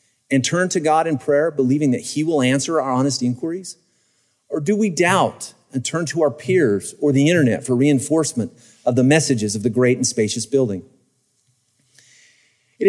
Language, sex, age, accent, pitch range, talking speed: English, male, 40-59, American, 125-170 Hz, 175 wpm